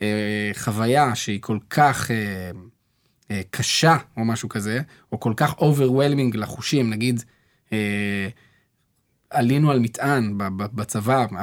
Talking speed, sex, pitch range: 115 wpm, male, 115-140 Hz